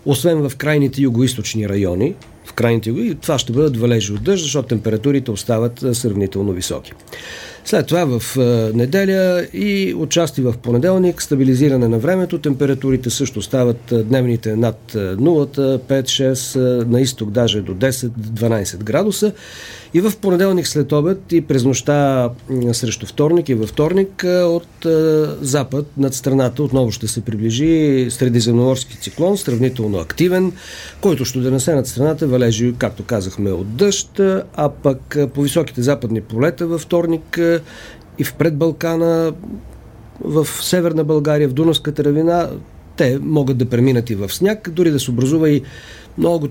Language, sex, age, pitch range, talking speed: Bulgarian, male, 50-69, 120-160 Hz, 140 wpm